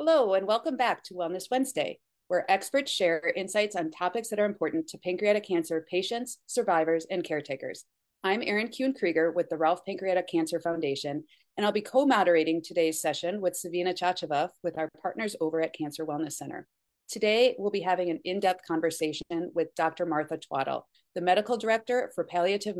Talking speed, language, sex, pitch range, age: 170 wpm, English, female, 165-220 Hz, 30-49